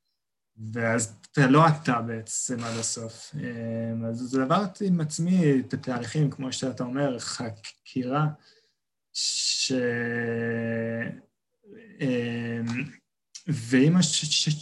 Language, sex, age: Hebrew, male, 20-39